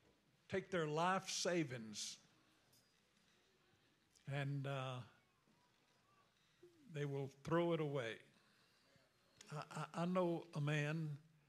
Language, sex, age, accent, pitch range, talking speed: English, male, 60-79, American, 135-155 Hz, 85 wpm